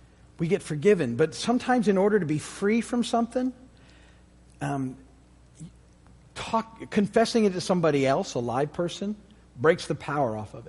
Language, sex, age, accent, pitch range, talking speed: English, male, 50-69, American, 115-155 Hz, 145 wpm